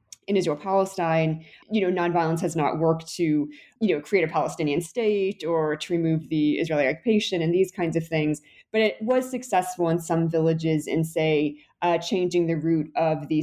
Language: English